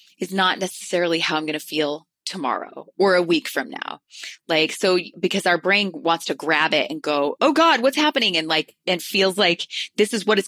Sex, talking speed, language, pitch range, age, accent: female, 210 wpm, English, 155-190 Hz, 20-39, American